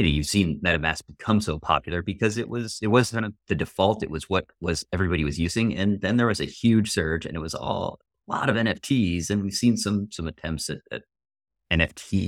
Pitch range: 75-90 Hz